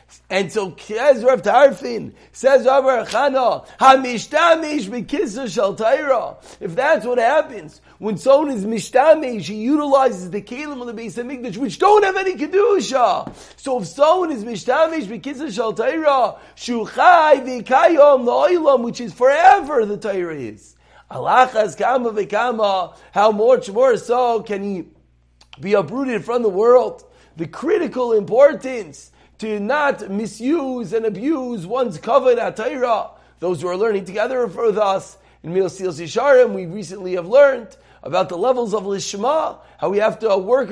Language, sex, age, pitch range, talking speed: English, male, 40-59, 205-280 Hz, 135 wpm